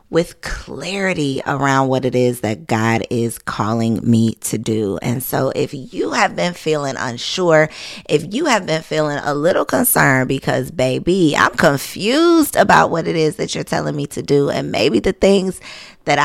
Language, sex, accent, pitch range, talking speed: English, female, American, 130-165 Hz, 175 wpm